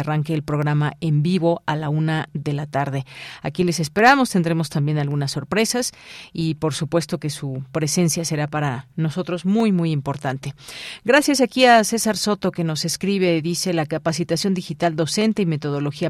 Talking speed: 170 wpm